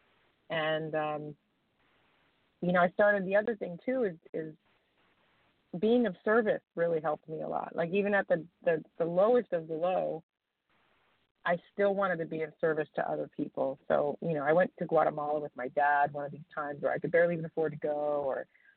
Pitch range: 160-200 Hz